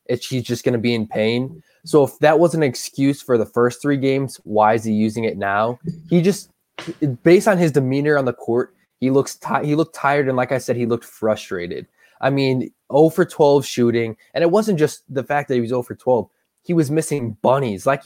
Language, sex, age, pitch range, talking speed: English, male, 20-39, 120-155 Hz, 235 wpm